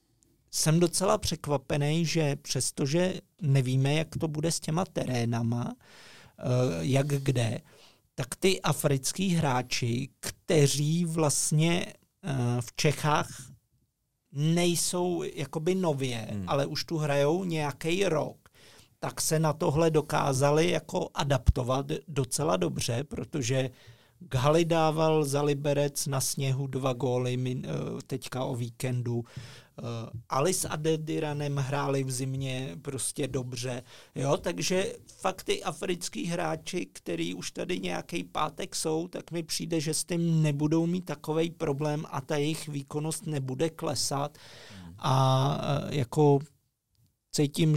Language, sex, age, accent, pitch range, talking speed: Czech, male, 50-69, native, 130-160 Hz, 115 wpm